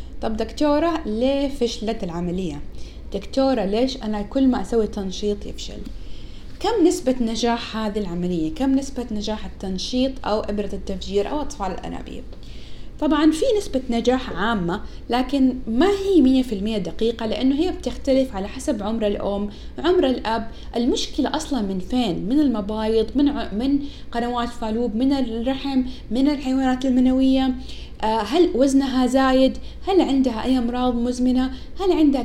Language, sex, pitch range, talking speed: Arabic, female, 205-265 Hz, 135 wpm